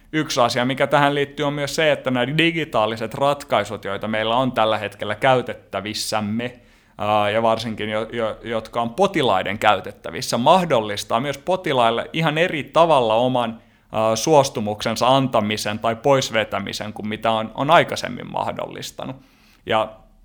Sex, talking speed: male, 125 wpm